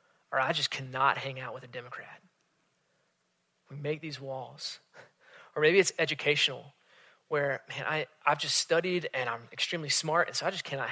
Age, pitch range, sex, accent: 20-39, 140-190 Hz, male, American